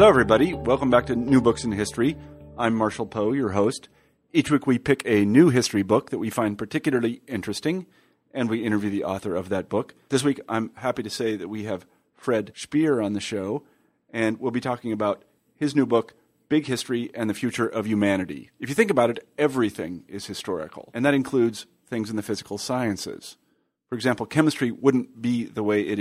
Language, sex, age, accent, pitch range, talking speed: English, male, 40-59, American, 105-125 Hz, 205 wpm